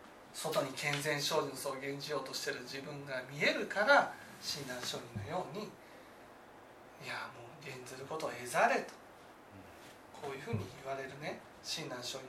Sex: male